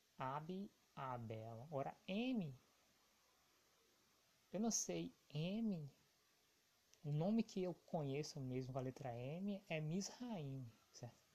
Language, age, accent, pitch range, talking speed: Portuguese, 20-39, Brazilian, 130-170 Hz, 105 wpm